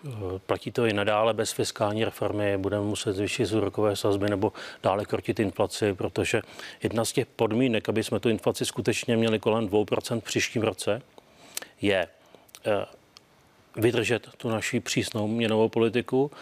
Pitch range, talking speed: 105-120 Hz, 145 wpm